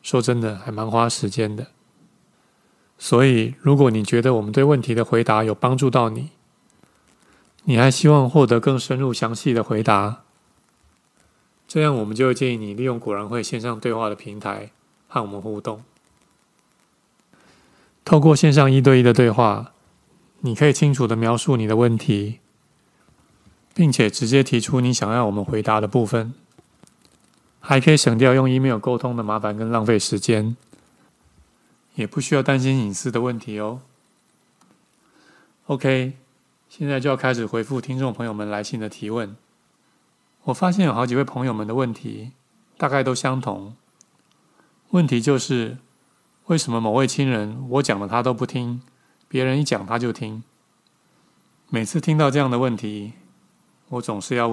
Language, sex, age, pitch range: Chinese, male, 20-39, 110-135 Hz